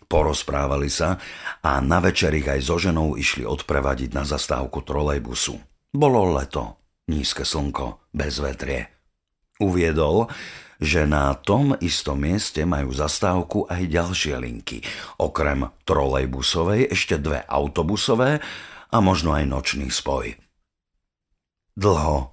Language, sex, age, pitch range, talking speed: Slovak, male, 50-69, 70-90 Hz, 115 wpm